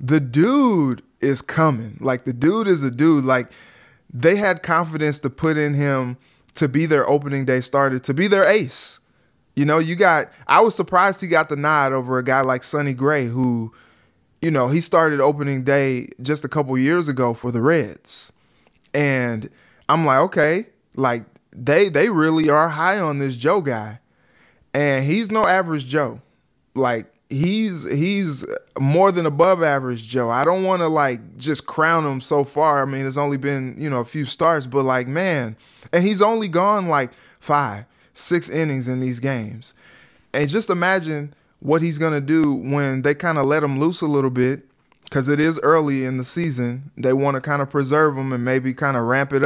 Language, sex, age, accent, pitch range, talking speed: English, male, 20-39, American, 130-160 Hz, 190 wpm